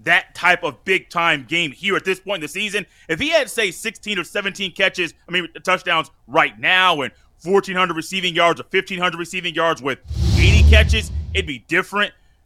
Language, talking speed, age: English, 190 wpm, 30-49